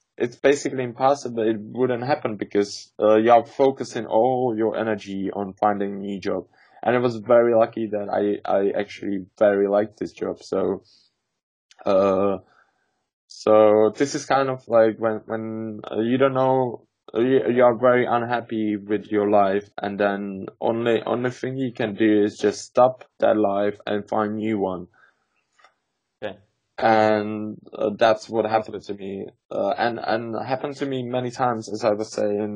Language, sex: English, male